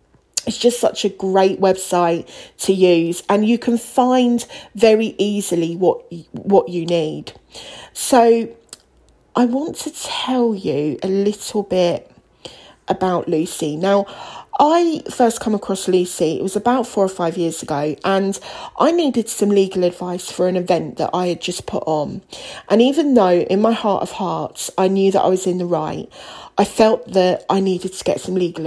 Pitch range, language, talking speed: 180-240 Hz, English, 175 wpm